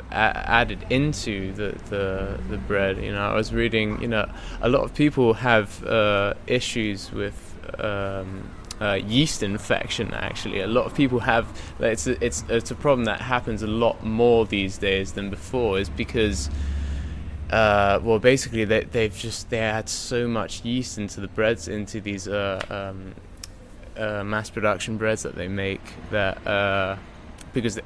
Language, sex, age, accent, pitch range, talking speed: English, male, 20-39, British, 95-115 Hz, 160 wpm